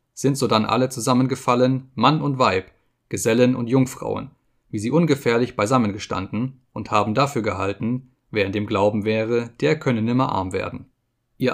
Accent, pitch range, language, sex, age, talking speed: German, 110-130 Hz, German, male, 30-49, 160 wpm